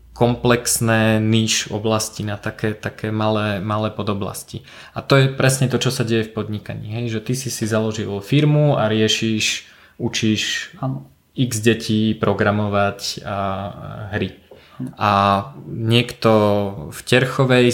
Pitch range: 110-125 Hz